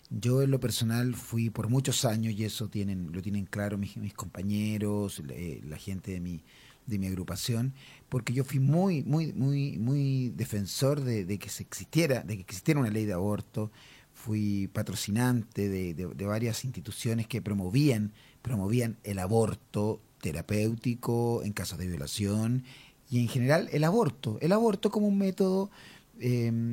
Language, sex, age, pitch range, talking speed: Spanish, male, 30-49, 105-135 Hz, 165 wpm